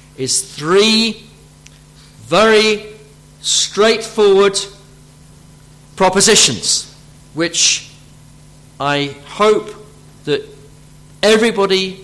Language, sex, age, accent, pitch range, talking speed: English, male, 50-69, British, 135-180 Hz, 50 wpm